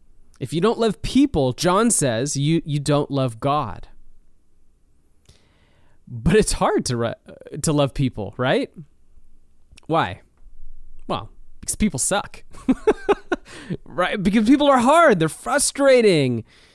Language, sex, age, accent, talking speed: English, male, 20-39, American, 115 wpm